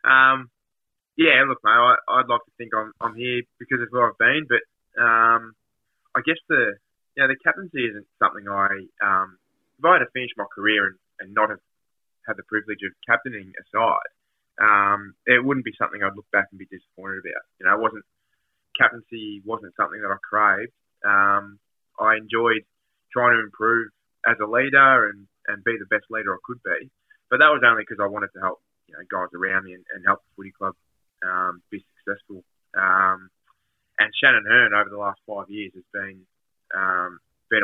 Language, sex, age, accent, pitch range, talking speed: English, male, 20-39, Australian, 100-115 Hz, 200 wpm